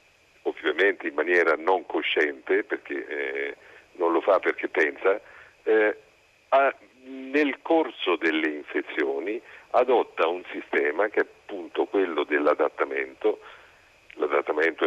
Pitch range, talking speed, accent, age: 325-435 Hz, 105 wpm, native, 50-69